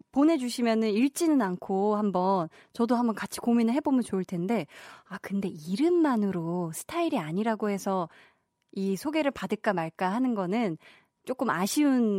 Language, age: Korean, 20-39